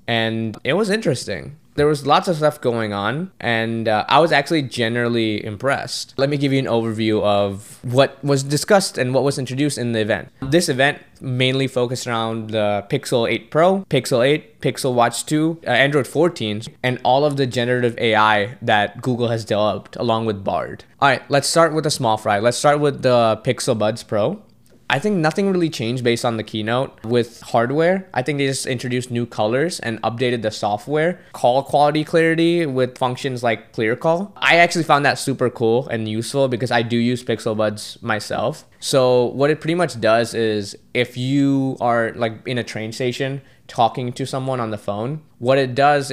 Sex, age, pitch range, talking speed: male, 20-39, 115-140 Hz, 195 wpm